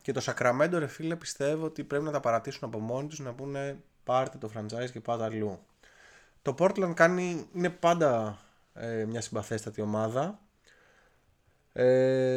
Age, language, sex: 20-39, Greek, male